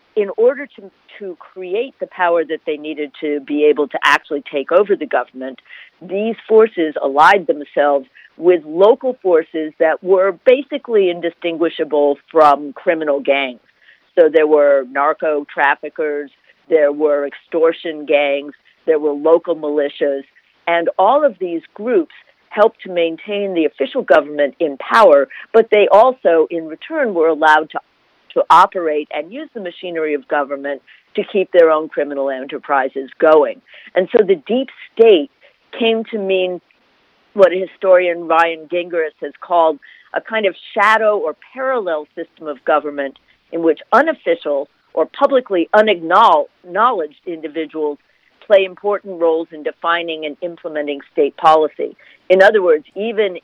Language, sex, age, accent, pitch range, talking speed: English, female, 50-69, American, 150-210 Hz, 140 wpm